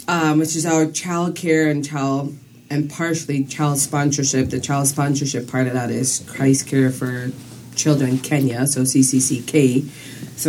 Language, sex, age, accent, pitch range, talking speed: English, female, 30-49, American, 130-150 Hz, 155 wpm